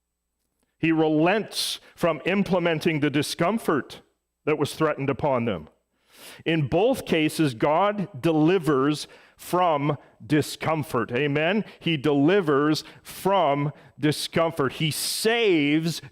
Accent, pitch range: American, 130-175 Hz